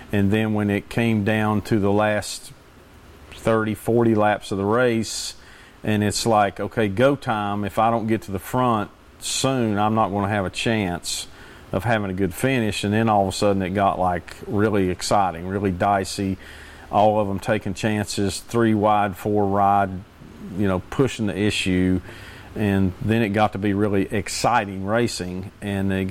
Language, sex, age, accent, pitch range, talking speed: English, male, 40-59, American, 95-110 Hz, 180 wpm